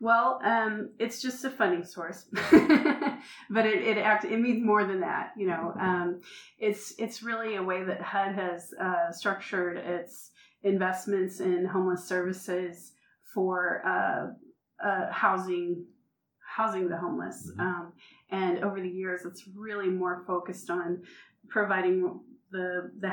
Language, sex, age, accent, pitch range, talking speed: English, female, 30-49, American, 180-210 Hz, 140 wpm